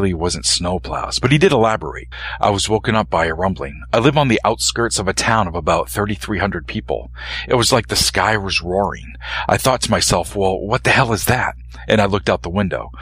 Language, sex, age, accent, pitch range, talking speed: English, male, 40-59, American, 85-125 Hz, 235 wpm